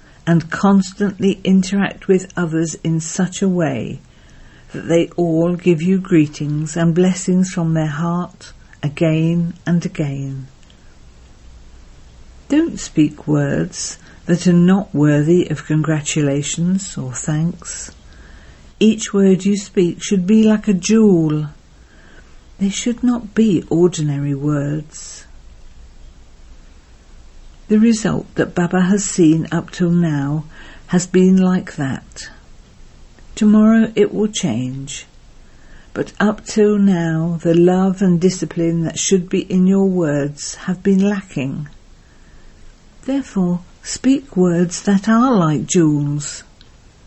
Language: English